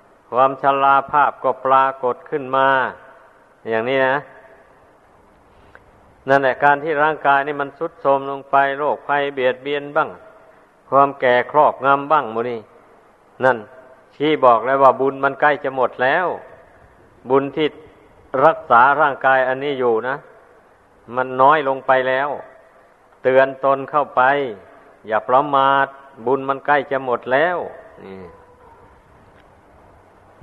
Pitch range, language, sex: 130-150 Hz, Thai, male